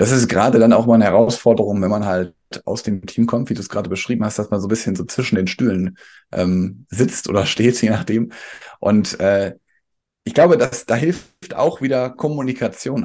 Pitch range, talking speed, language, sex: 105-120 Hz, 210 wpm, German, male